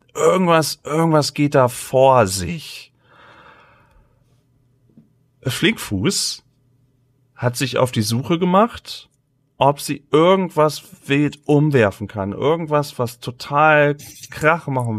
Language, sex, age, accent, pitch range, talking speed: German, male, 30-49, German, 110-150 Hz, 95 wpm